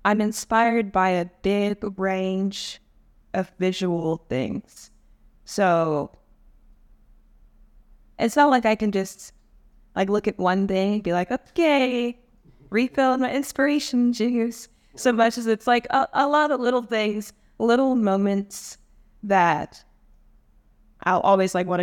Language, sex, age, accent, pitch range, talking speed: English, female, 20-39, American, 170-220 Hz, 130 wpm